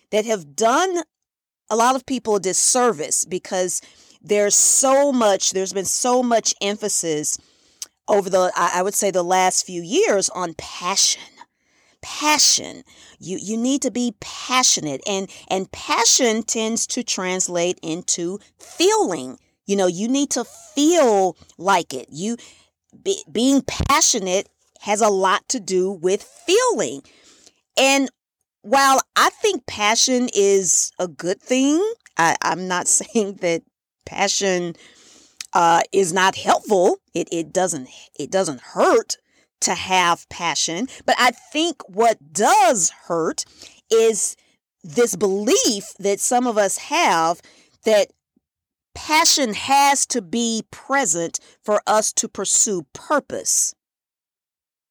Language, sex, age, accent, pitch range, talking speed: English, female, 40-59, American, 185-265 Hz, 125 wpm